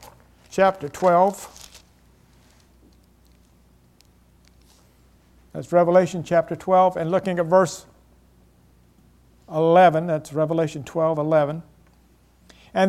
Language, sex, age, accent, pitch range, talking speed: English, male, 60-79, American, 130-195 Hz, 75 wpm